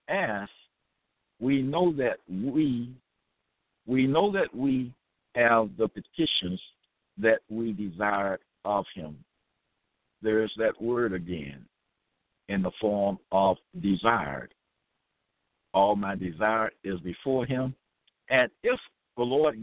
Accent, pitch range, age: American, 105-145 Hz, 60-79